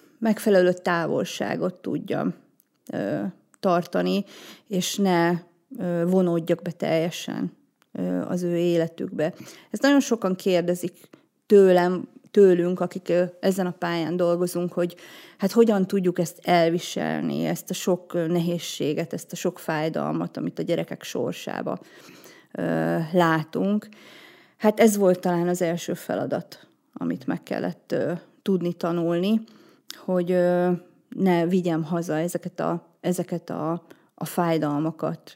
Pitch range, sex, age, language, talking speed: 170-195 Hz, female, 30-49, Hungarian, 105 wpm